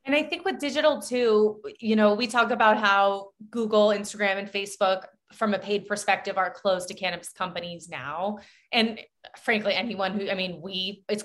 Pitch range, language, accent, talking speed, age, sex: 180-215 Hz, English, American, 180 wpm, 20-39, female